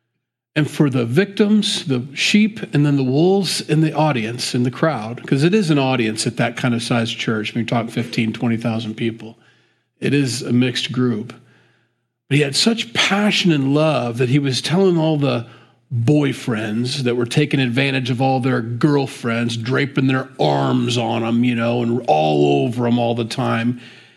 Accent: American